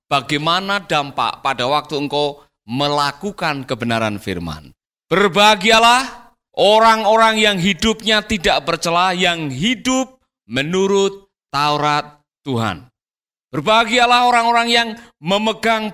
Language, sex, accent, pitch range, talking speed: Indonesian, male, native, 145-205 Hz, 85 wpm